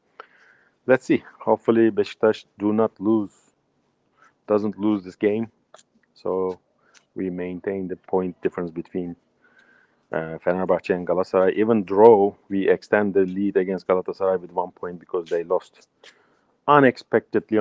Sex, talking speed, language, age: male, 125 wpm, English, 40-59